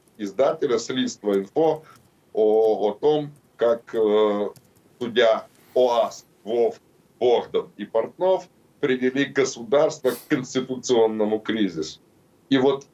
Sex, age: male, 40-59